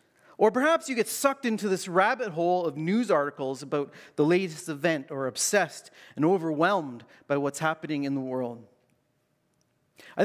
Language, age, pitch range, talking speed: English, 40-59, 140-195 Hz, 160 wpm